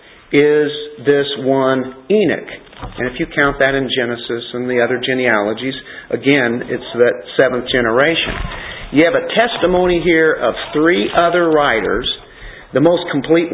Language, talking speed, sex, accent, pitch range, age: English, 140 wpm, male, American, 135-170 Hz, 50-69